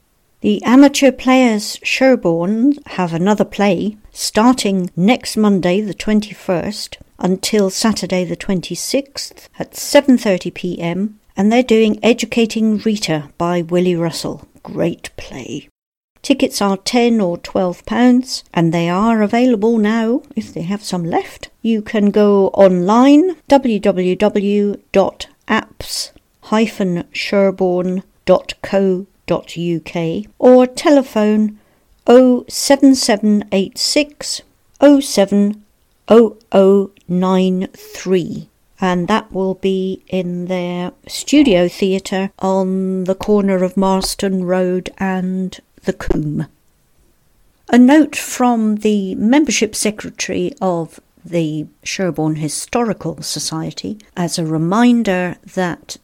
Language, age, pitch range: English, 60-79, 180-225 Hz